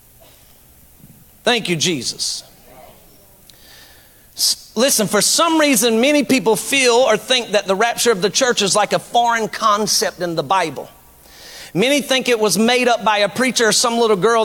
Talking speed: 160 wpm